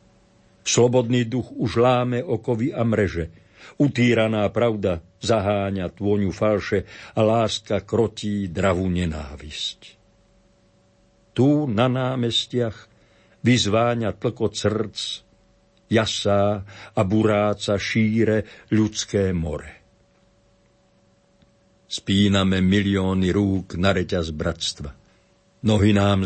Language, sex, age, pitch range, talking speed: Slovak, male, 50-69, 95-115 Hz, 85 wpm